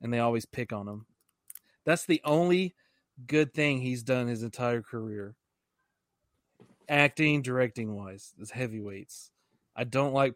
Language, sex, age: English, male, 30-49